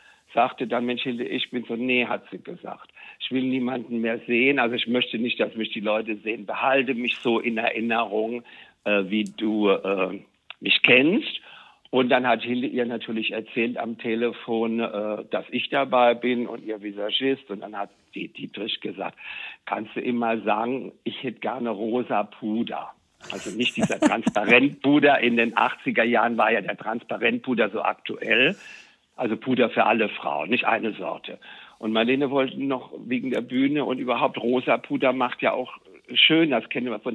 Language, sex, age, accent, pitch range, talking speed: German, male, 60-79, German, 110-130 Hz, 175 wpm